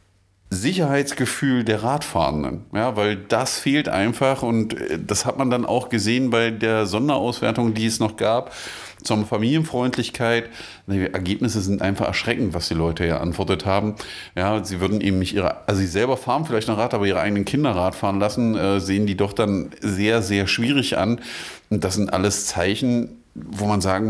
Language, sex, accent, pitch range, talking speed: German, male, German, 100-125 Hz, 175 wpm